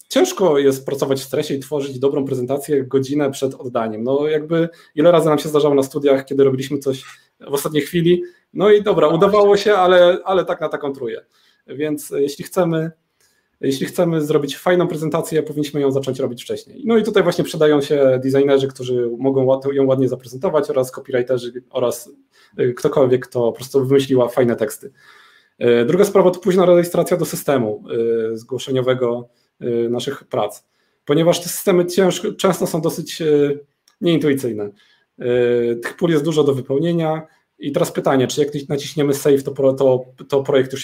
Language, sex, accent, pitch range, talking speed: Polish, male, native, 130-165 Hz, 155 wpm